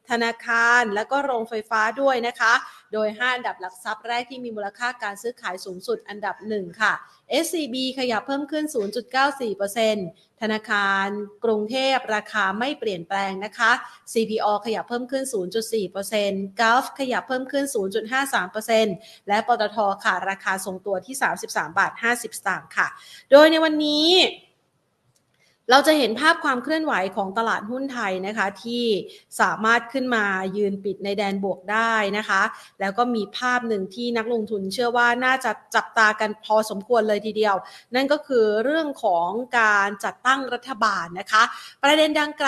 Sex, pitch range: female, 205-250 Hz